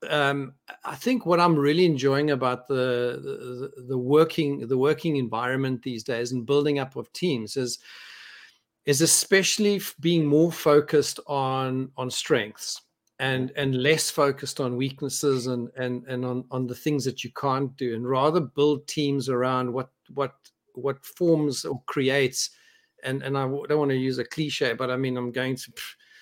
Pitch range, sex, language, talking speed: 130-155 Hz, male, English, 170 wpm